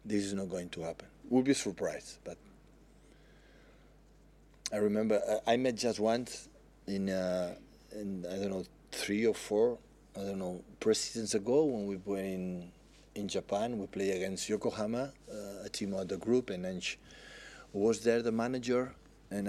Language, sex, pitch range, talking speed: English, male, 95-120 Hz, 165 wpm